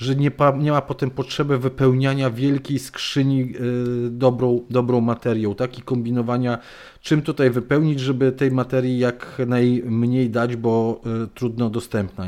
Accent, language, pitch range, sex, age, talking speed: native, Polish, 115-130 Hz, male, 40-59, 125 wpm